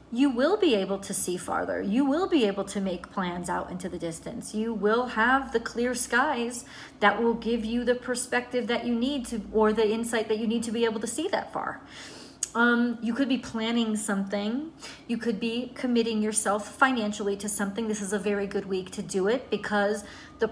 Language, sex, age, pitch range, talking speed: English, female, 30-49, 205-235 Hz, 210 wpm